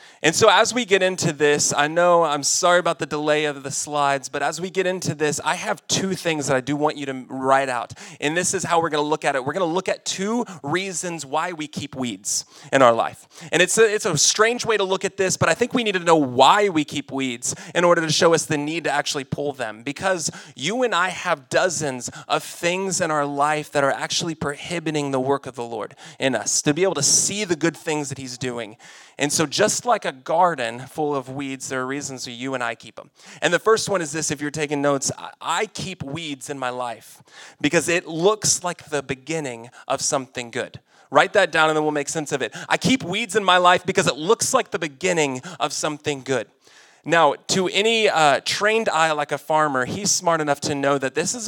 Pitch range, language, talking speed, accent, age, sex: 140-185 Hz, English, 245 wpm, American, 30-49, male